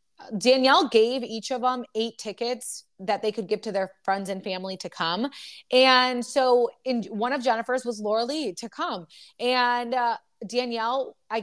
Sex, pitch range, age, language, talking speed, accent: female, 210-270 Hz, 20-39, English, 175 wpm, American